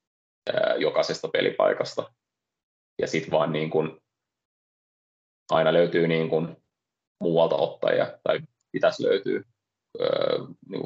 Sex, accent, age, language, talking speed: male, native, 30-49, Finnish, 85 wpm